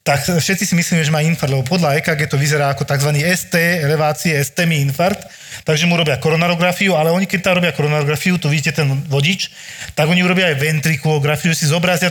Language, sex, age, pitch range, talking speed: Slovak, male, 40-59, 145-175 Hz, 200 wpm